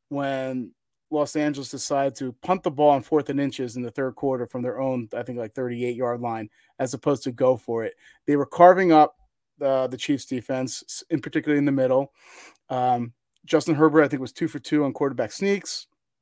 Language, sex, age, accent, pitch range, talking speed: English, male, 30-49, American, 135-175 Hz, 205 wpm